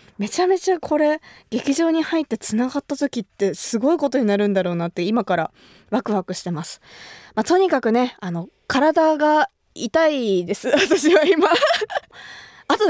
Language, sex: Japanese, female